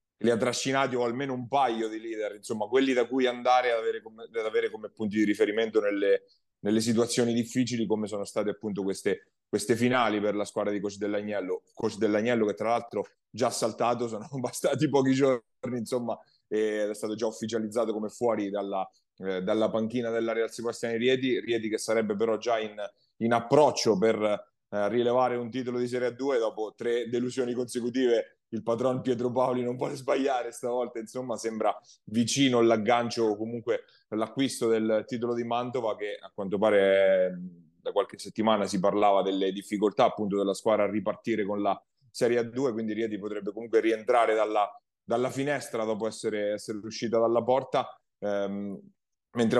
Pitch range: 105-125 Hz